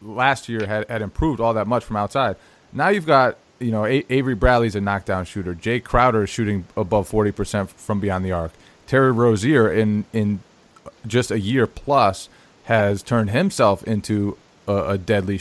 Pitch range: 100-125 Hz